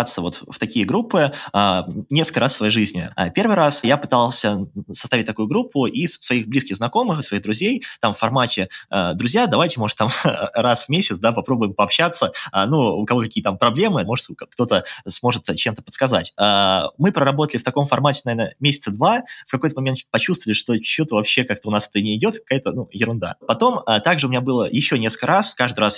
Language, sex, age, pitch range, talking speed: Russian, male, 20-39, 105-145 Hz, 185 wpm